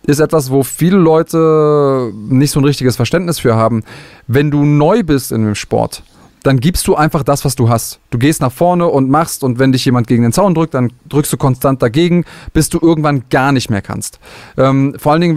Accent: German